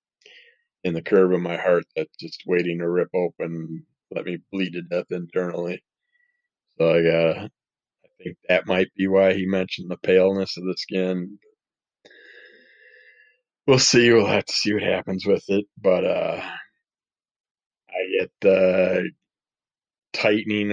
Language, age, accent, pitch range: English, 20-39, American, 90-105 Hz